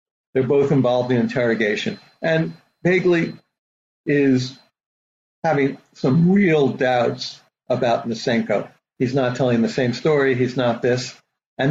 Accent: American